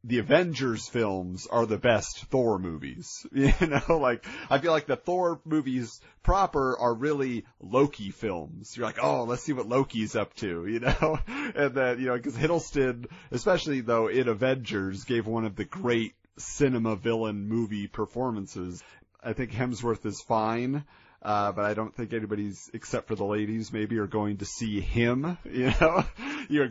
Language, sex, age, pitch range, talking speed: English, male, 30-49, 110-140 Hz, 170 wpm